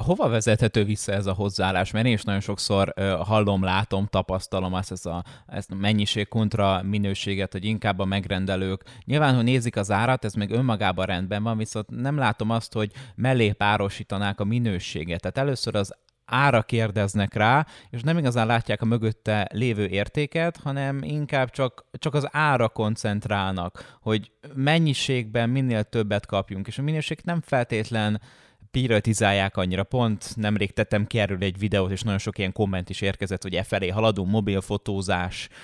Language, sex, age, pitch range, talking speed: Hungarian, male, 20-39, 100-120 Hz, 165 wpm